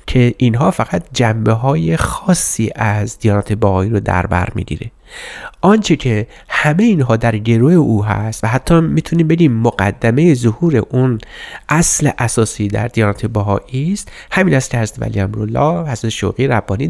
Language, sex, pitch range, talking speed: Persian, male, 105-135 Hz, 145 wpm